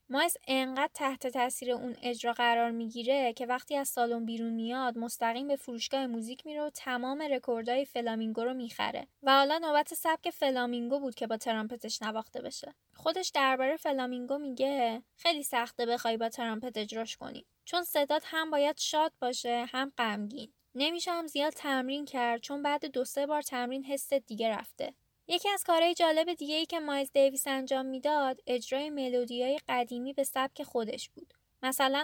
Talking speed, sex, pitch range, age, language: 165 wpm, female, 240-295 Hz, 10-29, Persian